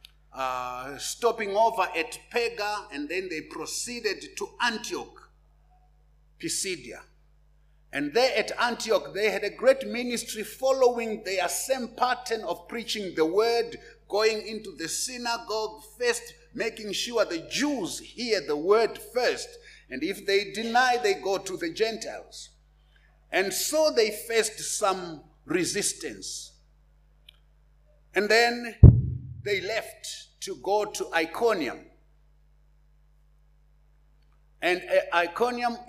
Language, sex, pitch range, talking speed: English, male, 150-235 Hz, 110 wpm